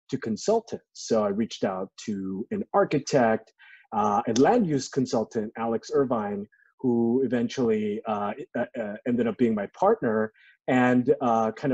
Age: 30-49